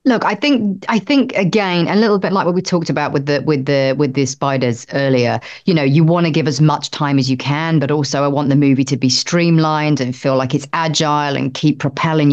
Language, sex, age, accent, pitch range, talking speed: English, female, 30-49, British, 145-190 Hz, 250 wpm